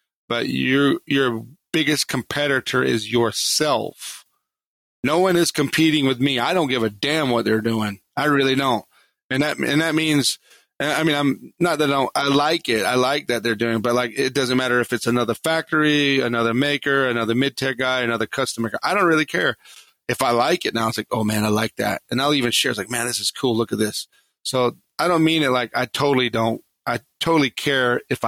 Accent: American